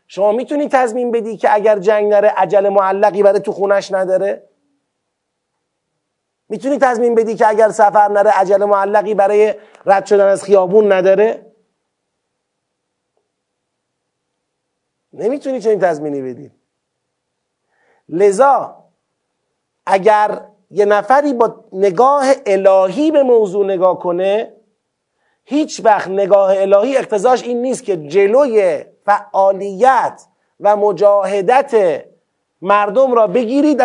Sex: male